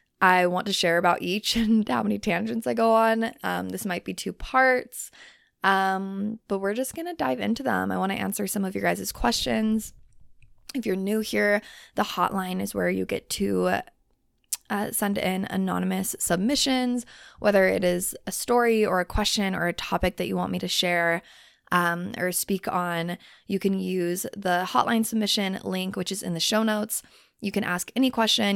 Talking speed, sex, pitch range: 195 wpm, female, 180-215 Hz